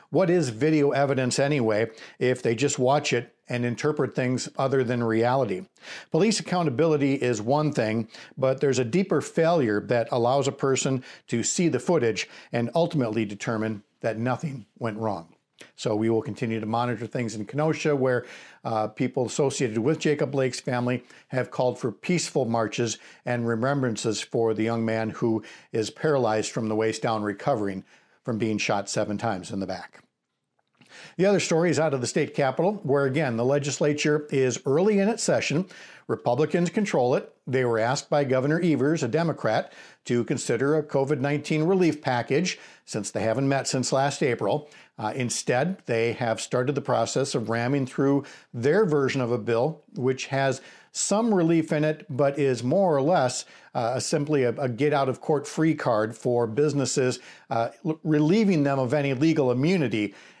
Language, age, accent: English, 50-69, American